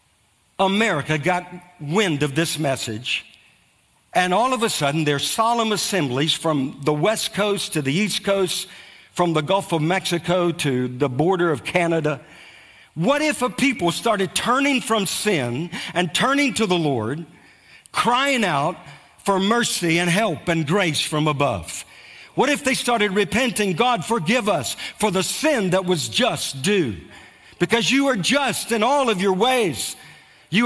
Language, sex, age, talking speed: English, male, 50-69, 155 wpm